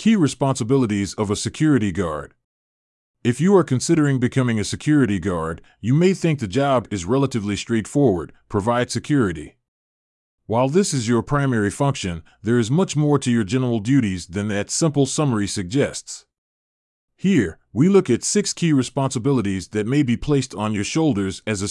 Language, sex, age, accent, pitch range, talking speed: English, male, 30-49, American, 100-140 Hz, 165 wpm